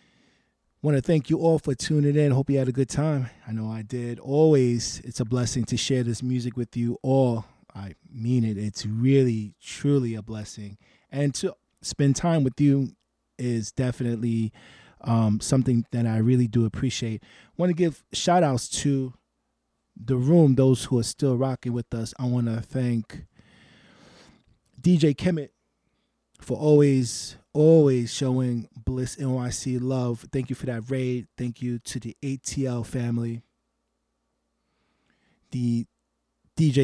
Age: 20-39